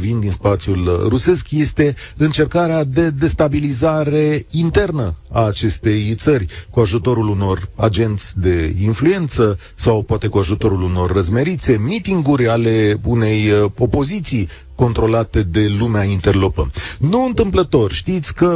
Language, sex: Romanian, male